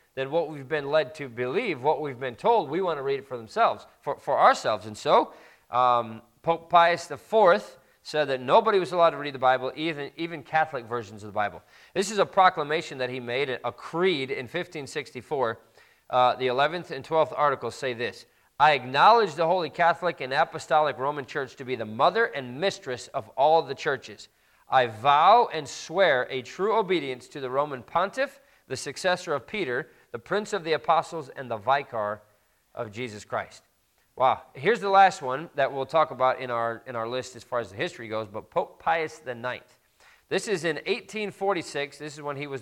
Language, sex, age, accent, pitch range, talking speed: English, male, 40-59, American, 125-165 Hz, 195 wpm